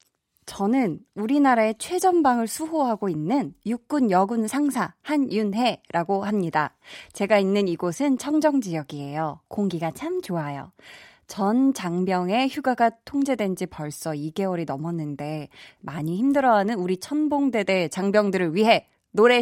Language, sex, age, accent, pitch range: Korean, female, 20-39, native, 175-265 Hz